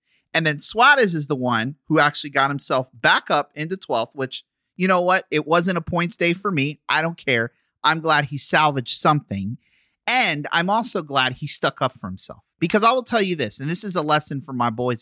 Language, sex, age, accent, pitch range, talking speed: English, male, 30-49, American, 130-180 Hz, 225 wpm